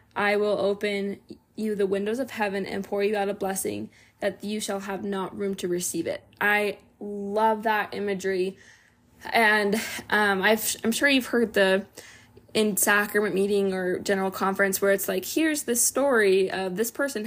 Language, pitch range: English, 195-225 Hz